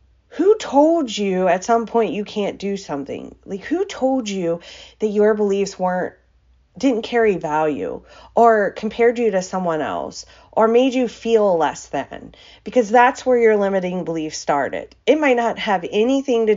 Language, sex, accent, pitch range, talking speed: English, female, American, 175-225 Hz, 165 wpm